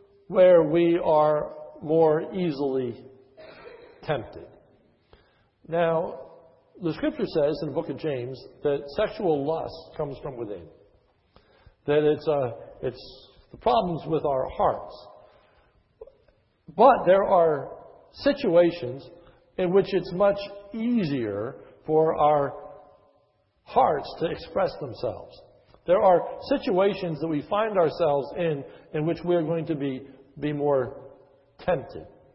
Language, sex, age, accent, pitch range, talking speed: English, male, 60-79, American, 150-200 Hz, 115 wpm